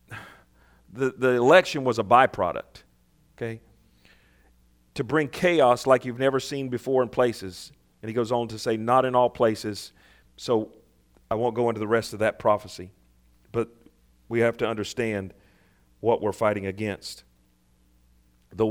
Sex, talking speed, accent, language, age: male, 150 wpm, American, English, 40-59